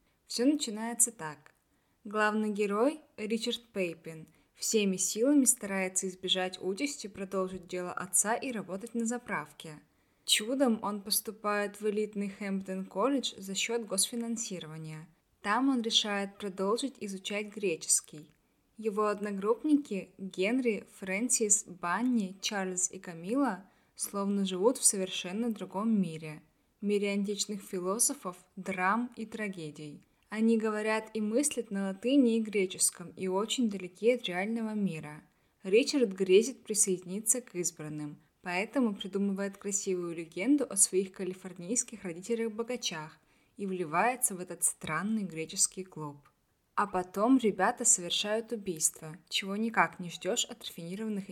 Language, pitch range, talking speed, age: Russian, 185-230 Hz, 115 wpm, 20-39